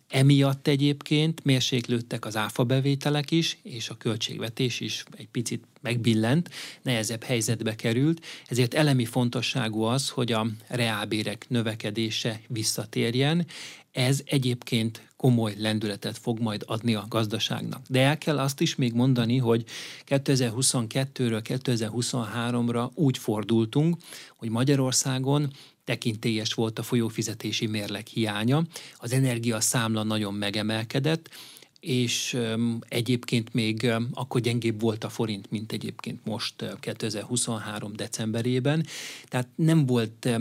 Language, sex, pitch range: Hungarian, male, 110-135 Hz